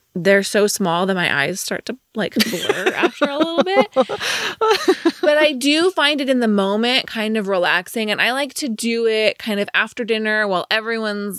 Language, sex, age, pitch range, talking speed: English, female, 20-39, 180-235 Hz, 195 wpm